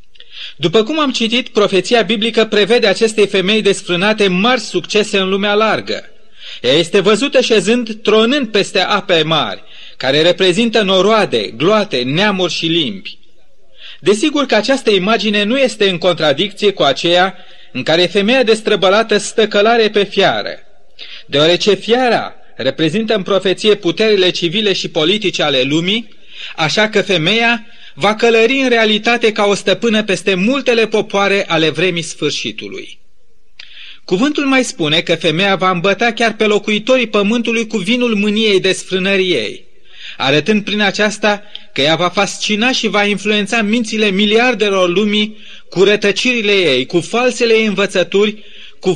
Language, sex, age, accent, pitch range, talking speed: Romanian, male, 30-49, native, 185-225 Hz, 135 wpm